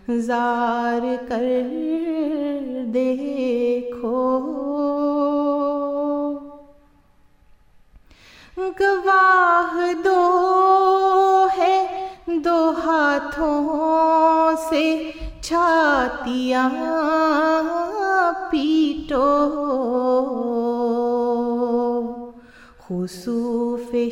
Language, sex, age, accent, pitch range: English, female, 30-49, Indian, 245-320 Hz